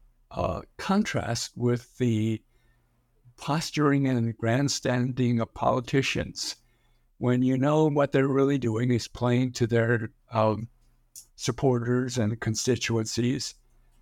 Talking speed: 105 wpm